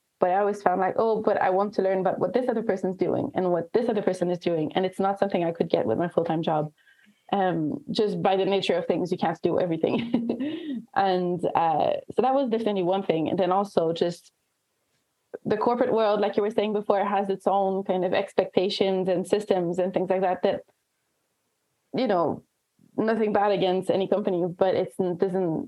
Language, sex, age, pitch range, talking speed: English, female, 20-39, 180-210 Hz, 210 wpm